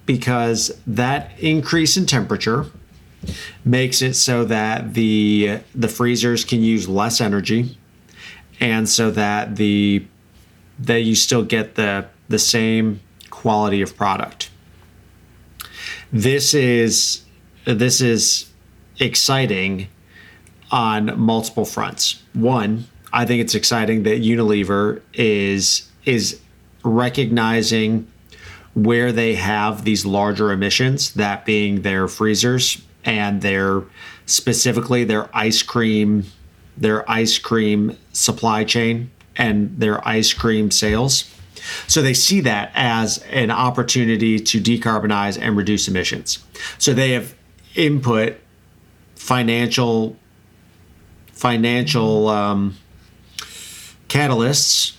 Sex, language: male, English